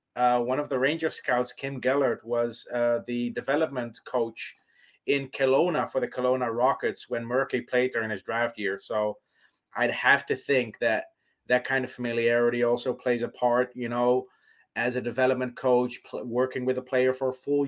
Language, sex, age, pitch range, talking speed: English, male, 30-49, 120-130 Hz, 185 wpm